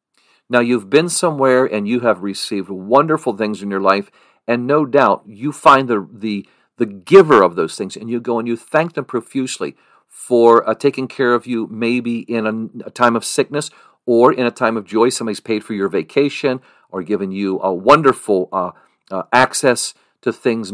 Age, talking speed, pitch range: 50-69, 195 wpm, 110-135 Hz